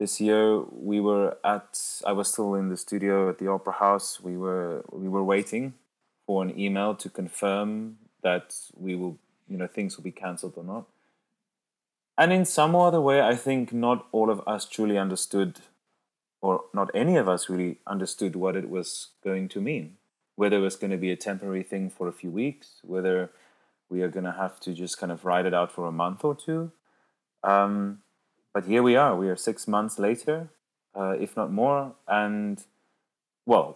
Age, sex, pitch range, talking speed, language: 20-39, male, 90-105 Hz, 195 wpm, English